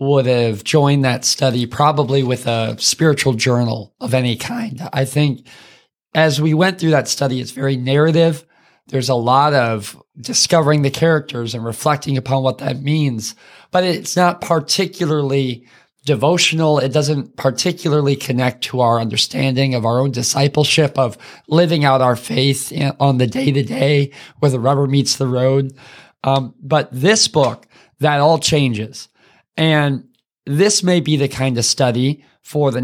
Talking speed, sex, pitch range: 155 wpm, male, 130-155 Hz